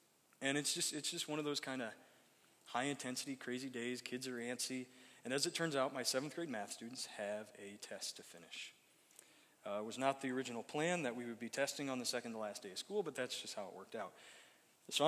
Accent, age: American, 20-39